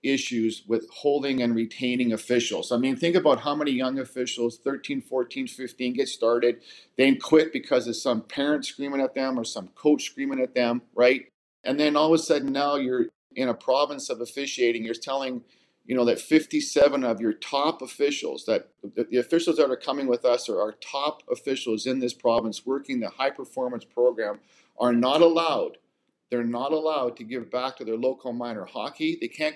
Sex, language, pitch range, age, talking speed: male, English, 120-155 Hz, 50-69, 190 wpm